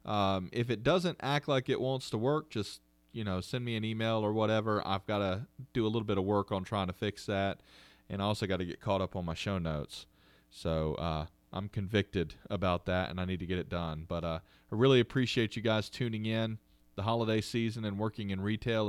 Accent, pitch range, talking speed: American, 90-115 Hz, 235 wpm